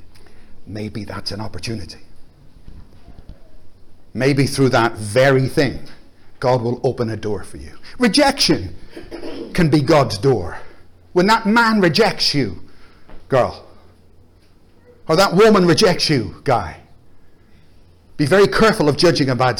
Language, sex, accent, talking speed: English, male, British, 120 wpm